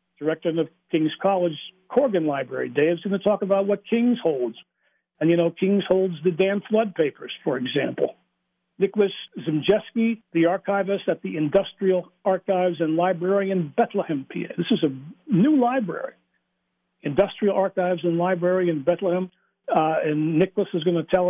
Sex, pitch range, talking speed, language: male, 160-195 Hz, 160 wpm, English